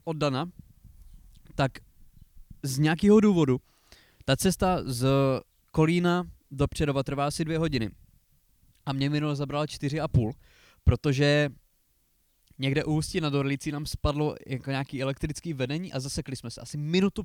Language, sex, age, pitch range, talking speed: Czech, male, 20-39, 130-165 Hz, 140 wpm